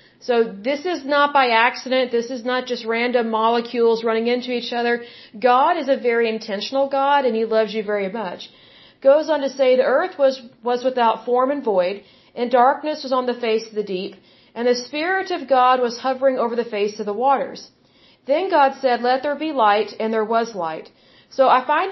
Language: English